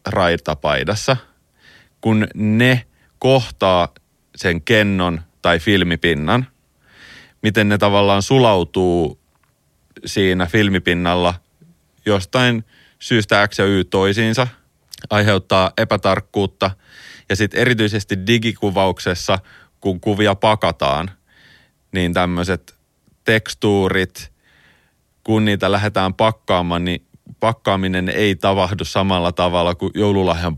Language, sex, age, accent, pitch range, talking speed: Finnish, male, 30-49, native, 90-110 Hz, 85 wpm